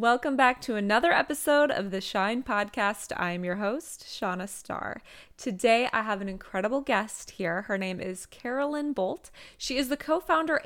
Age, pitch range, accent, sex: 20-39, 205-280 Hz, American, female